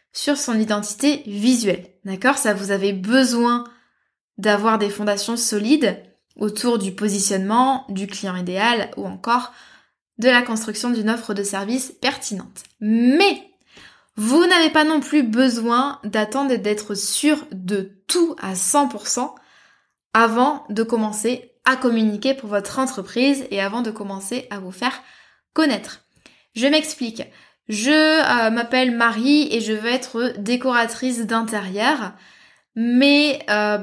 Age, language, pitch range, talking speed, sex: 20-39, French, 210-265 Hz, 130 wpm, female